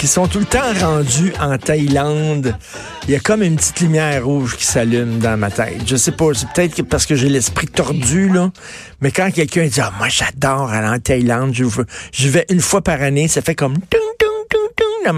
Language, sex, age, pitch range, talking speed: French, male, 50-69, 120-155 Hz, 215 wpm